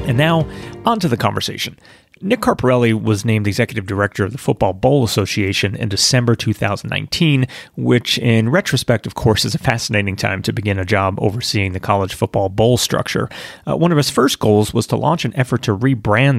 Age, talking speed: 30-49, 190 wpm